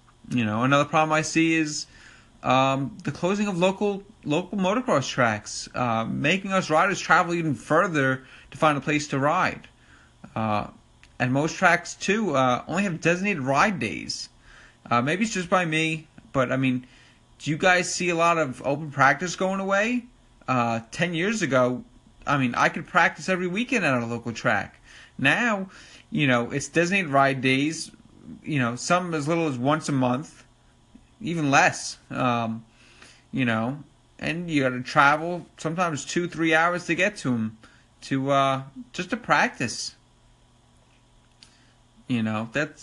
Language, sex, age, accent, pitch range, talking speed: English, male, 30-49, American, 125-175 Hz, 160 wpm